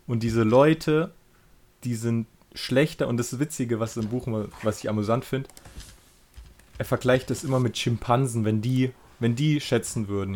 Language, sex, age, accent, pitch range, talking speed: German, male, 20-39, German, 105-130 Hz, 170 wpm